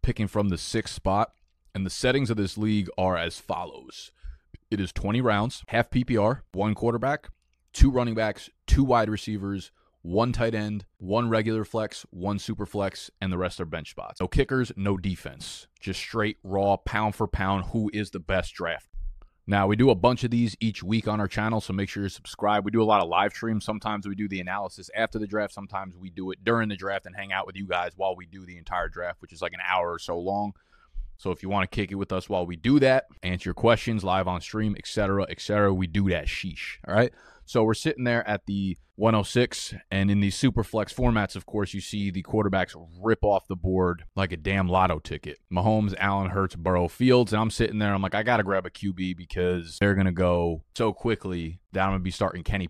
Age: 20-39